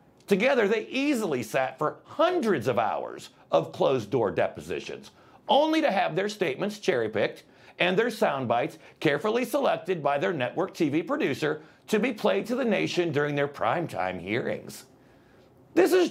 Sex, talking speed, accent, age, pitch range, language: male, 155 wpm, American, 50-69, 130-215 Hz, English